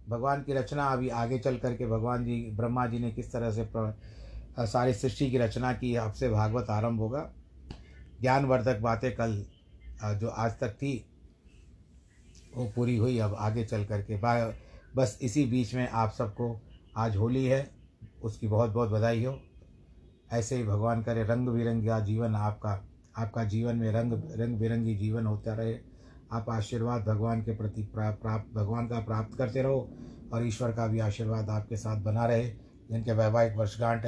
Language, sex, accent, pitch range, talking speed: Hindi, male, native, 110-120 Hz, 170 wpm